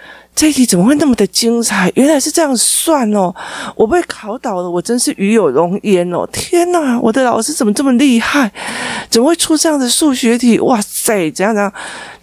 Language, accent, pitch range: Chinese, native, 175-250 Hz